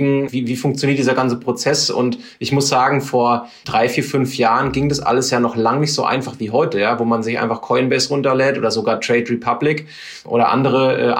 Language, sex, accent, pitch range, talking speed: German, male, German, 120-140 Hz, 215 wpm